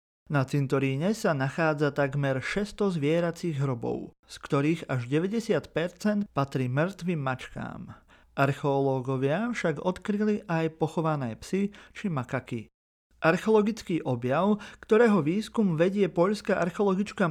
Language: Slovak